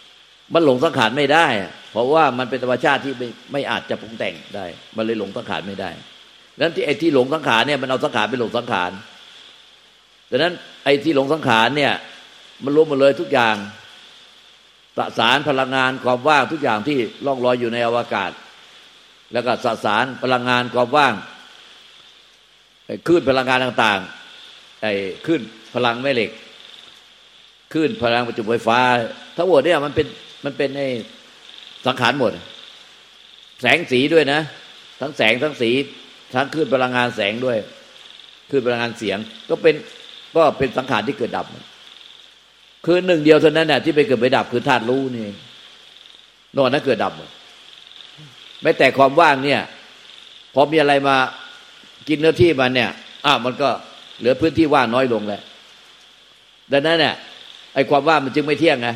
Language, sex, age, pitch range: Thai, male, 50-69, 120-150 Hz